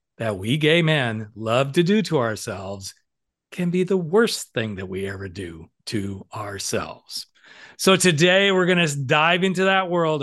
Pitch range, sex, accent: 120-160 Hz, male, American